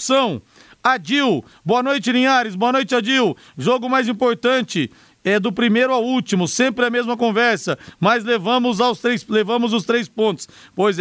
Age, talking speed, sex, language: 50-69, 140 wpm, male, Portuguese